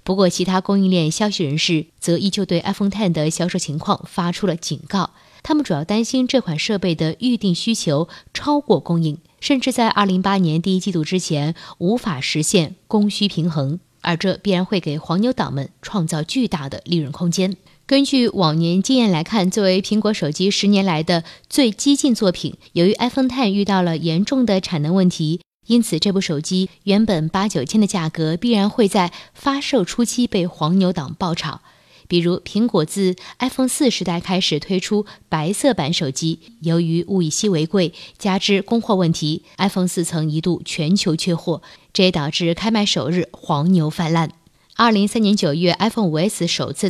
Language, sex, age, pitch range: Chinese, female, 20-39, 170-215 Hz